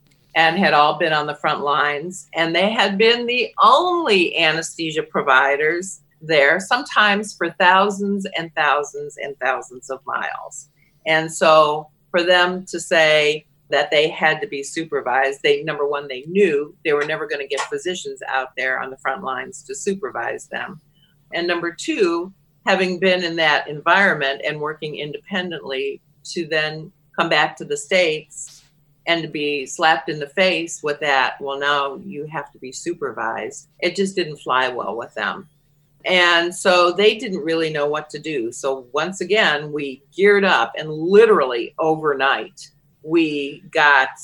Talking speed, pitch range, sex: 165 wpm, 145-185 Hz, female